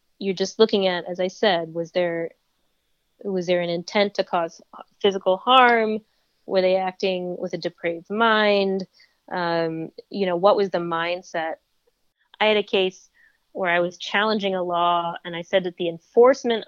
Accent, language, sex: American, English, female